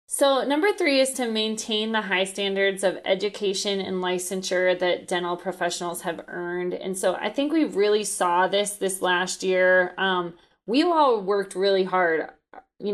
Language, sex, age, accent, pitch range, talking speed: English, female, 20-39, American, 180-210 Hz, 165 wpm